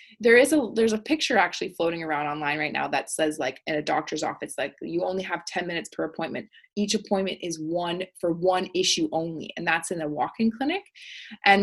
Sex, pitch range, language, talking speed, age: female, 160-205 Hz, English, 215 wpm, 20-39